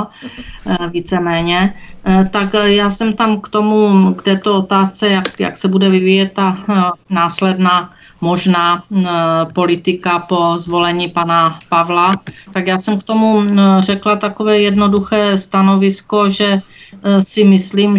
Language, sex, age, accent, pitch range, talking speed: Czech, female, 40-59, native, 170-195 Hz, 115 wpm